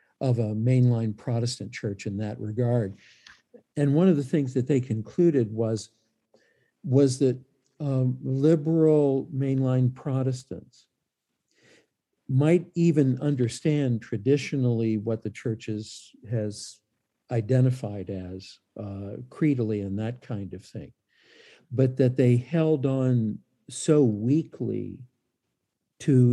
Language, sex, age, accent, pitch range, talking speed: English, male, 50-69, American, 110-135 Hz, 110 wpm